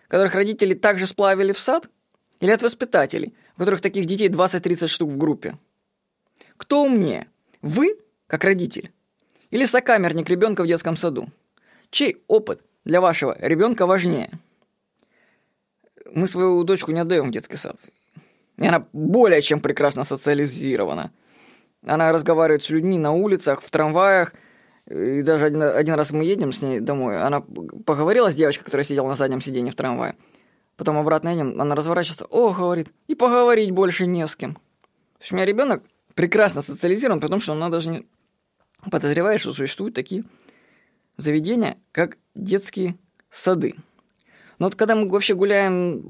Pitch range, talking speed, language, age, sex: 160-210 Hz, 150 wpm, Russian, 20-39, female